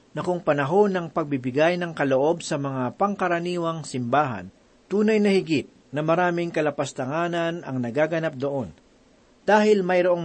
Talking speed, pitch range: 130 wpm, 145-185 Hz